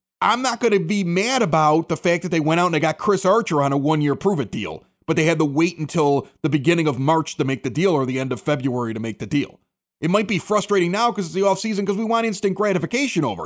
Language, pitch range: English, 155-230 Hz